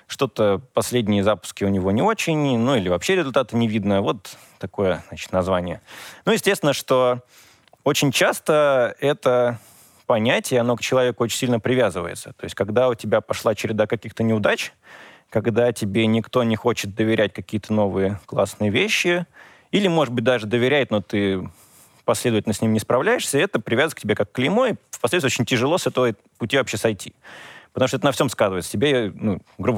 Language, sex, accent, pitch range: Russian, male, native, 110-130 Hz